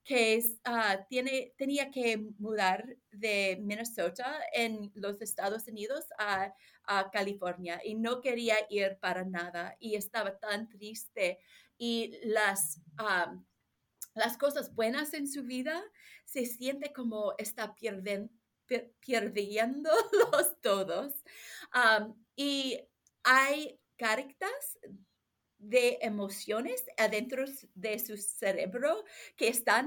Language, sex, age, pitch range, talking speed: Spanish, female, 30-49, 215-285 Hz, 110 wpm